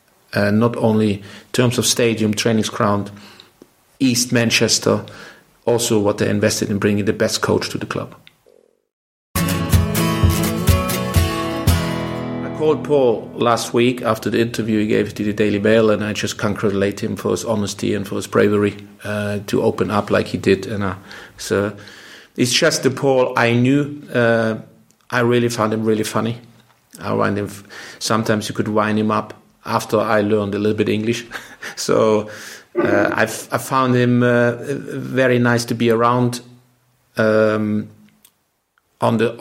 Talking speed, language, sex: 155 wpm, English, male